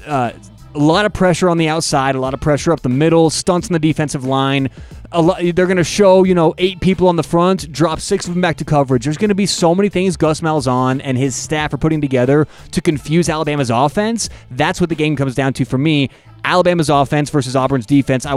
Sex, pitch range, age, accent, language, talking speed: male, 140-180 Hz, 30-49, American, English, 240 wpm